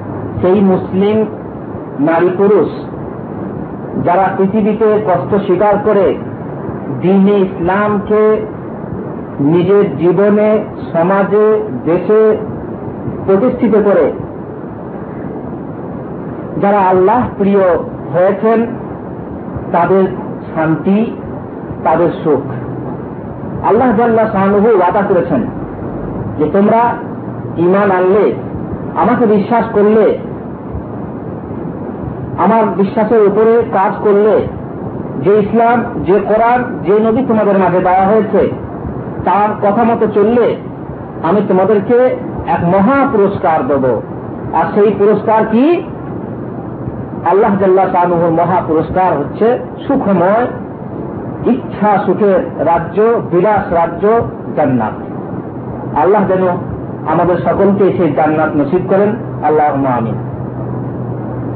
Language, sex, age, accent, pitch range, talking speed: Bengali, male, 50-69, native, 175-215 Hz, 65 wpm